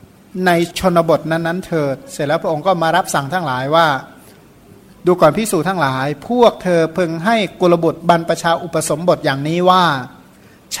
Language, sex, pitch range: Thai, male, 155-185 Hz